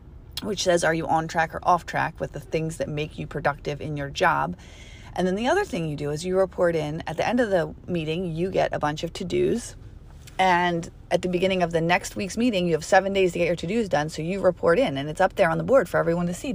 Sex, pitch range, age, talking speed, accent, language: female, 150-190 Hz, 30-49, 280 wpm, American, English